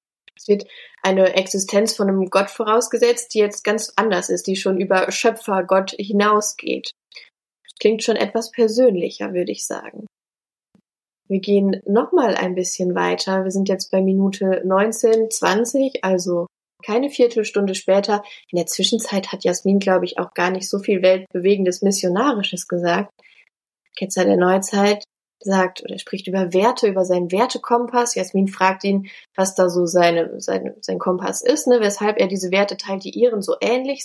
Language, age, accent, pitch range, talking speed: German, 20-39, German, 185-225 Hz, 160 wpm